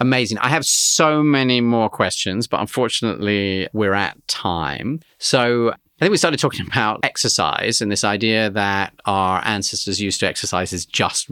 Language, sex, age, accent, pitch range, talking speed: English, male, 40-59, British, 100-120 Hz, 165 wpm